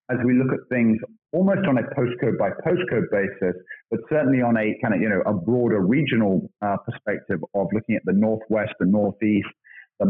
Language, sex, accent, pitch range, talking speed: English, male, British, 110-130 Hz, 195 wpm